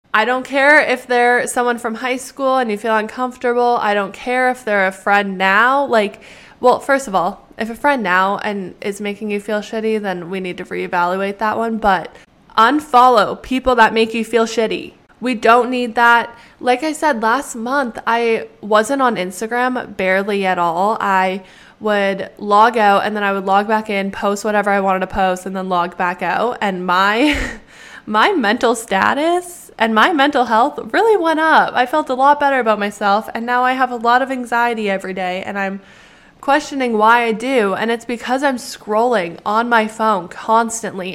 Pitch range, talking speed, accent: 200-250 Hz, 195 wpm, American